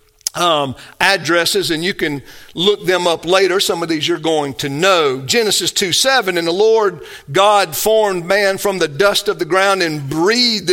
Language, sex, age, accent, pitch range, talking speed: English, male, 50-69, American, 165-230 Hz, 185 wpm